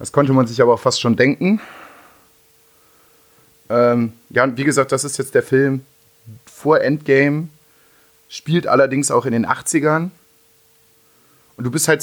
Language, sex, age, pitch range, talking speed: German, male, 30-49, 115-140 Hz, 155 wpm